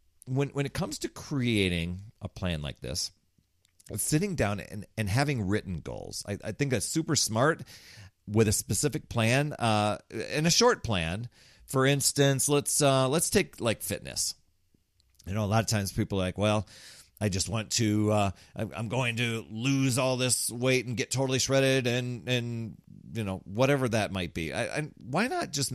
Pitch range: 95-130 Hz